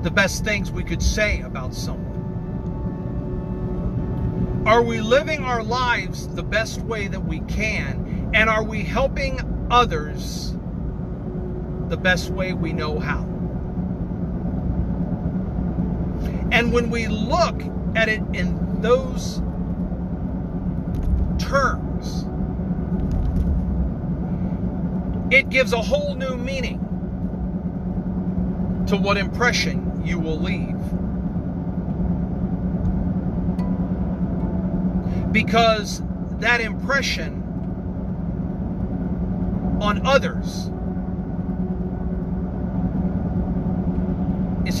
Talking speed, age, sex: 75 wpm, 50-69, male